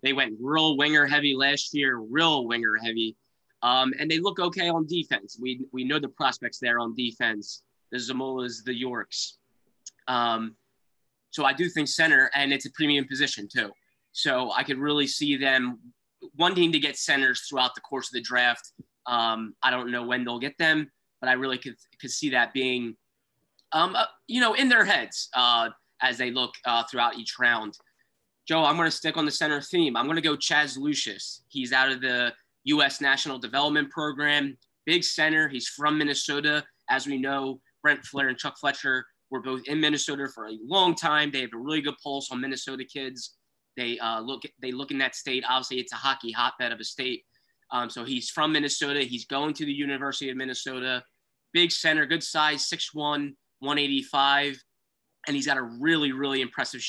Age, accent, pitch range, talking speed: 20-39, American, 125-150 Hz, 190 wpm